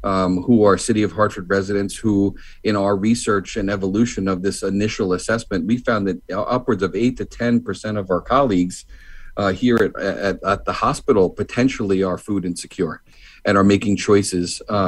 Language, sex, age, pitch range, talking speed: English, male, 40-59, 95-110 Hz, 180 wpm